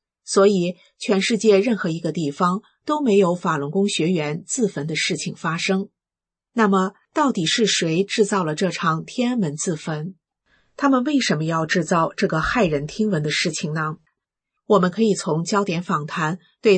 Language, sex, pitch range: Chinese, female, 160-215 Hz